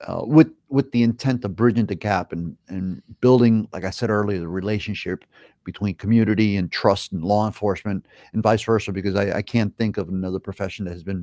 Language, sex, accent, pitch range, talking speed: English, male, American, 100-120 Hz, 210 wpm